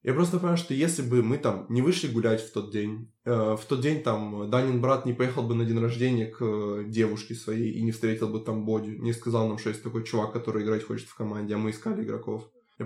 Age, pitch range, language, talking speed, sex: 20-39, 110-125 Hz, Russian, 250 wpm, male